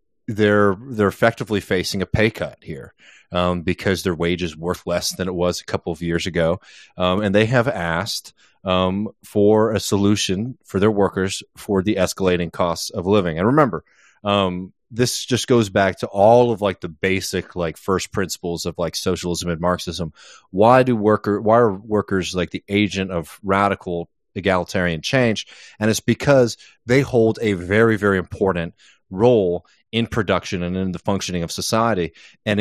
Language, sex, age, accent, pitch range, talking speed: English, male, 30-49, American, 90-105 Hz, 175 wpm